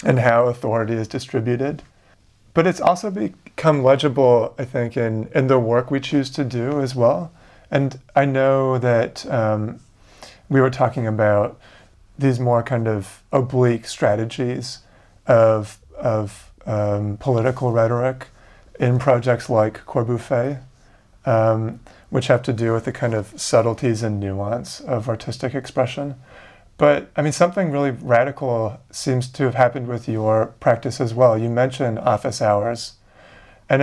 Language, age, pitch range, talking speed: English, 30-49, 110-135 Hz, 145 wpm